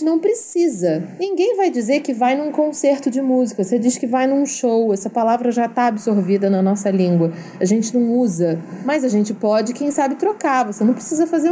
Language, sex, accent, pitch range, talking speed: Portuguese, female, Brazilian, 205-275 Hz, 210 wpm